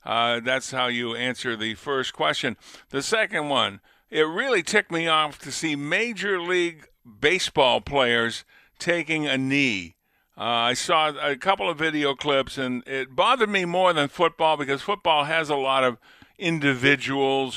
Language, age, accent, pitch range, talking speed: English, 50-69, American, 125-165 Hz, 160 wpm